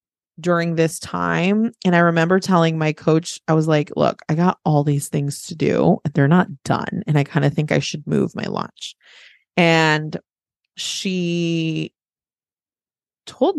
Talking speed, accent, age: 165 wpm, American, 20-39